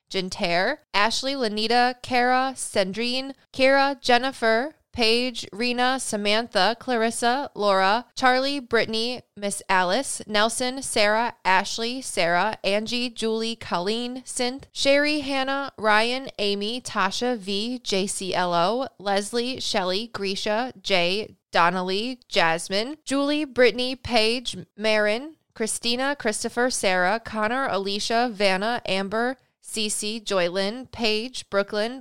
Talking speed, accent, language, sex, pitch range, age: 95 wpm, American, English, female, 200-245 Hz, 20-39